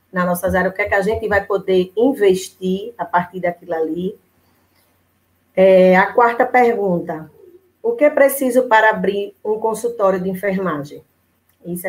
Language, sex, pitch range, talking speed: Portuguese, female, 180-225 Hz, 155 wpm